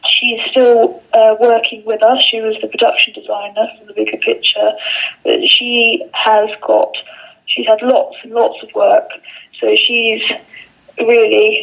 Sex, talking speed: female, 145 wpm